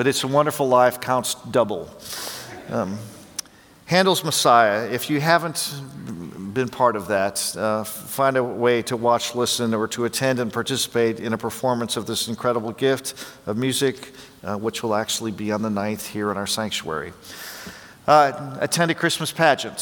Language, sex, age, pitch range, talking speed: English, male, 50-69, 105-125 Hz, 165 wpm